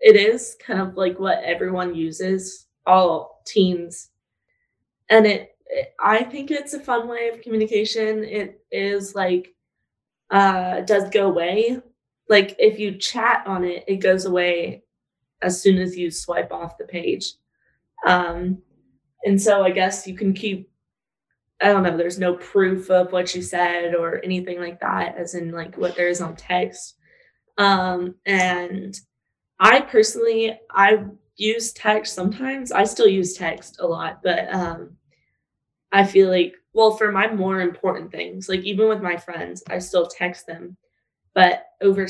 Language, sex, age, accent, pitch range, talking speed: English, female, 20-39, American, 180-215 Hz, 160 wpm